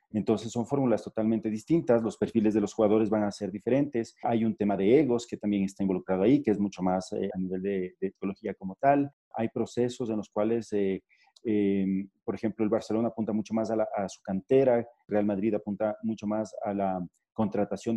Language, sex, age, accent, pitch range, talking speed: Spanish, male, 40-59, Mexican, 105-130 Hz, 210 wpm